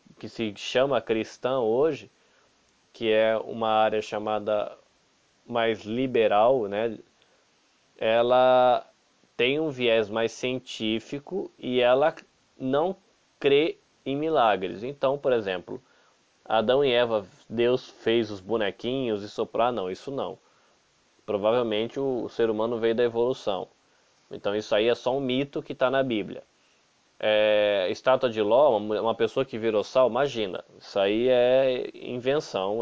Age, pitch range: 20-39, 110-130 Hz